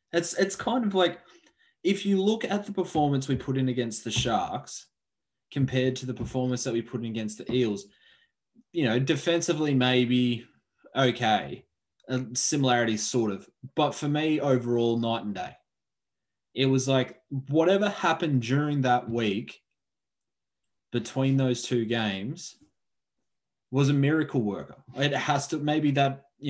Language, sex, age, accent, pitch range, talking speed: English, male, 20-39, Australian, 120-150 Hz, 145 wpm